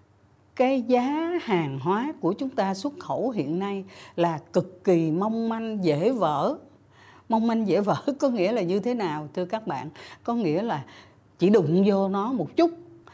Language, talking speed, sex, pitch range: Vietnamese, 185 wpm, female, 145-225 Hz